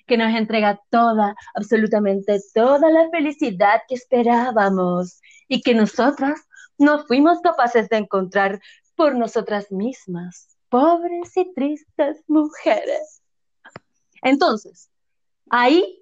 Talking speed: 100 wpm